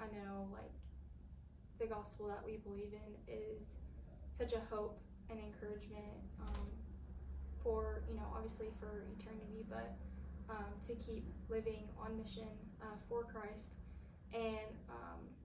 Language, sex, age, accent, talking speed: English, female, 10-29, American, 130 wpm